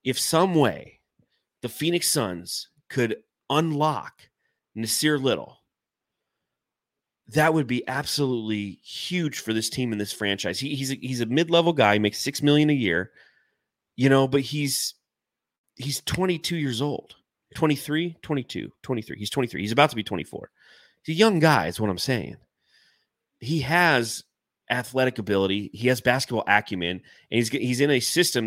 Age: 30-49